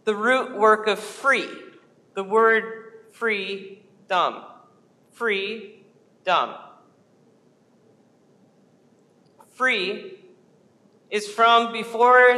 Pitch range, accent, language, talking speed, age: 190-225 Hz, American, English, 75 wpm, 40-59